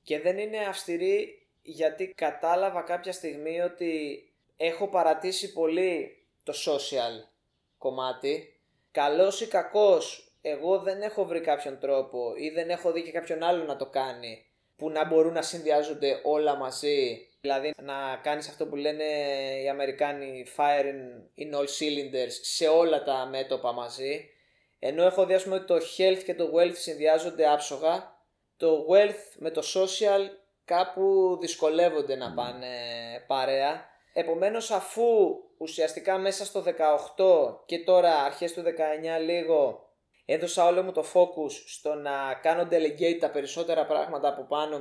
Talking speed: 140 wpm